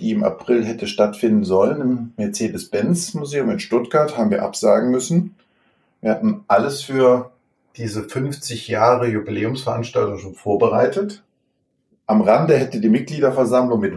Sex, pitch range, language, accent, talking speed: male, 110-140 Hz, German, German, 130 wpm